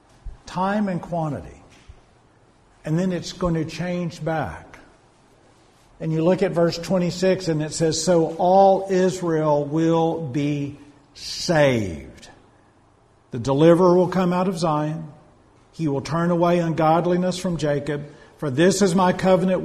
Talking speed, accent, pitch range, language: 135 wpm, American, 130-165 Hz, English